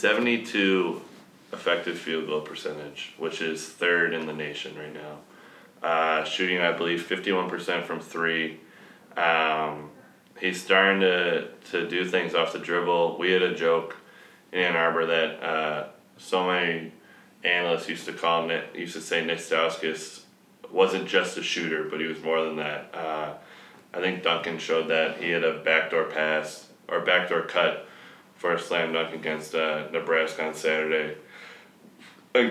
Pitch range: 80-85 Hz